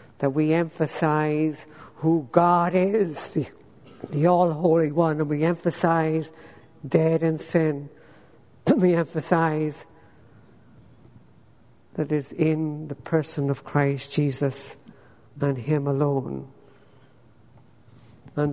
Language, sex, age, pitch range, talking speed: English, female, 60-79, 140-160 Hz, 100 wpm